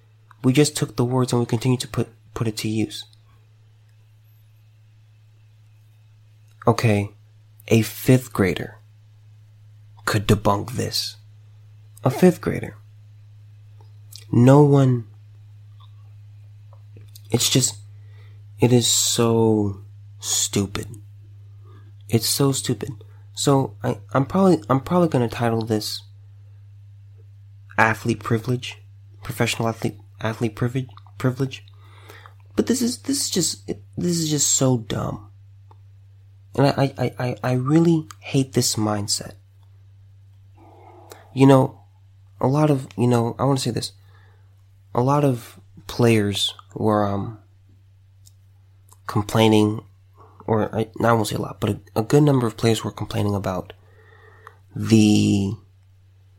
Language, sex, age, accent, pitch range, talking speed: English, male, 30-49, American, 100-115 Hz, 115 wpm